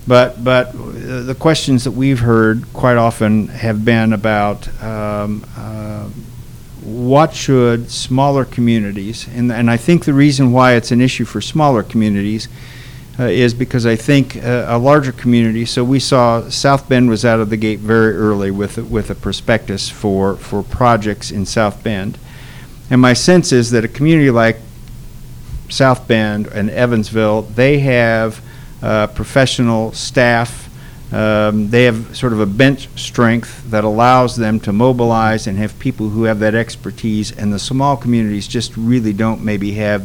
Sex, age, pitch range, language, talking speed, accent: male, 50-69, 105-125 Hz, English, 165 wpm, American